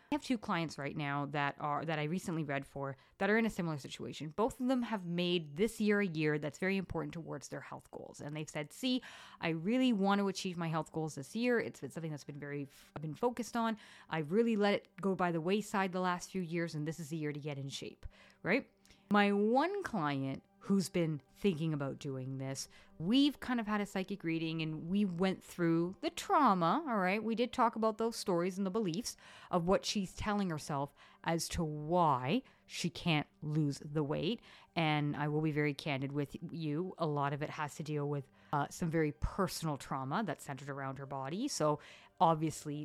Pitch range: 150-205 Hz